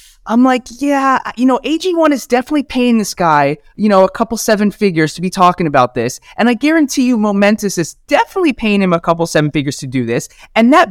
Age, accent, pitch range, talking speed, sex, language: 20-39, American, 130-200 Hz, 220 wpm, male, English